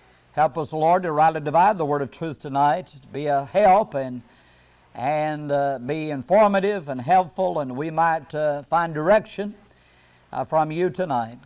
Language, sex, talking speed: English, male, 160 wpm